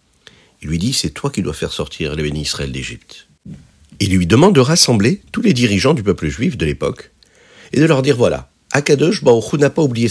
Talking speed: 210 wpm